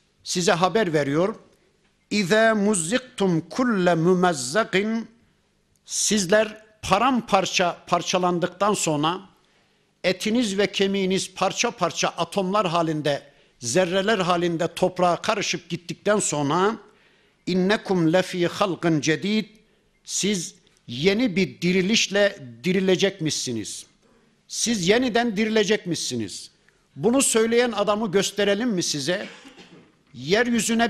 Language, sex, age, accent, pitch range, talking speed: Turkish, male, 60-79, native, 170-210 Hz, 85 wpm